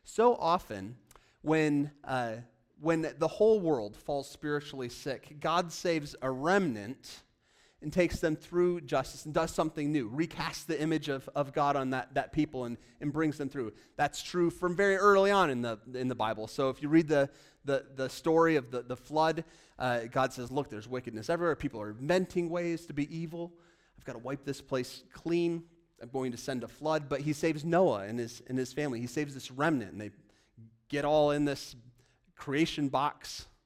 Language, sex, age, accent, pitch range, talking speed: English, male, 30-49, American, 120-155 Hz, 195 wpm